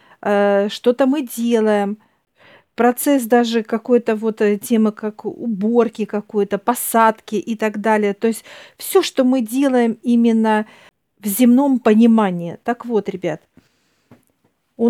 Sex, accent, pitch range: female, native, 210-250 Hz